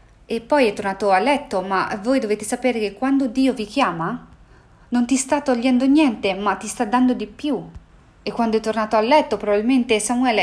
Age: 30-49